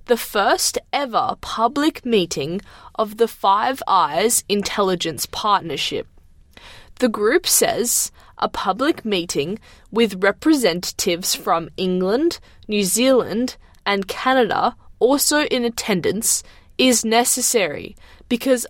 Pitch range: 195-245 Hz